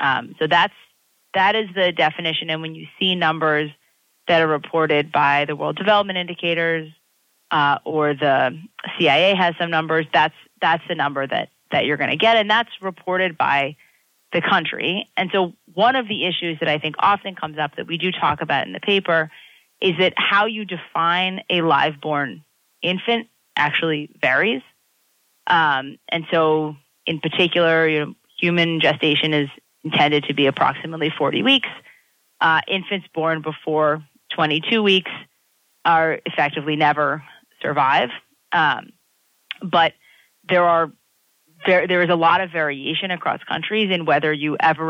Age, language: 30-49, English